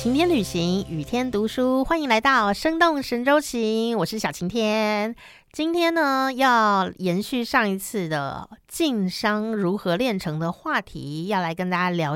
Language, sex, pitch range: Chinese, female, 170-240 Hz